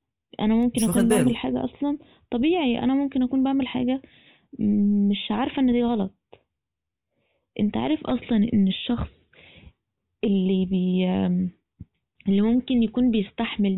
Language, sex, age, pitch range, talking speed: Arabic, female, 20-39, 195-235 Hz, 120 wpm